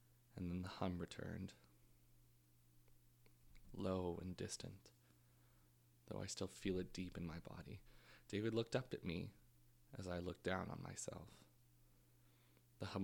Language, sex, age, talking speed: English, male, 20-39, 140 wpm